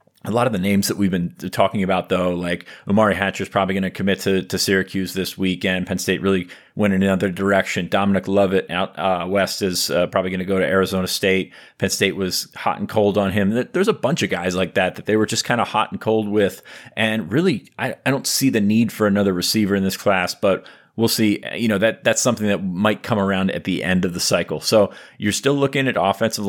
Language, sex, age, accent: English, male, 30-49, American